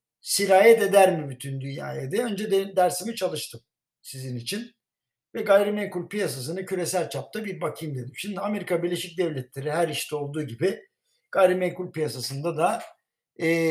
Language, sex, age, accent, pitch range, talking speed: Turkish, male, 60-79, native, 145-200 Hz, 140 wpm